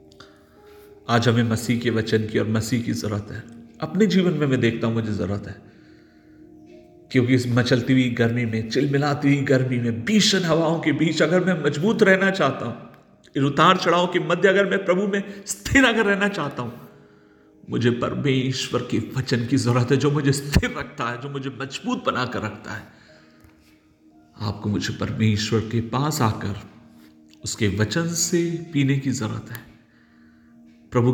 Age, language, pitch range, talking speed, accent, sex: 50-69, Hindi, 110-150 Hz, 165 wpm, native, male